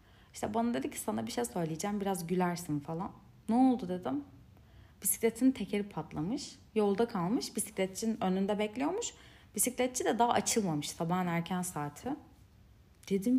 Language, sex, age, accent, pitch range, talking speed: Turkish, female, 30-49, native, 145-225 Hz, 135 wpm